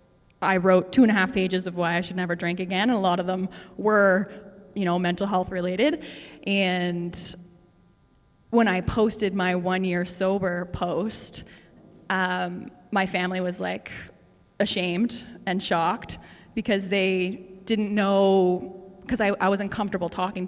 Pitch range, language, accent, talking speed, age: 180-210 Hz, English, American, 150 wpm, 20-39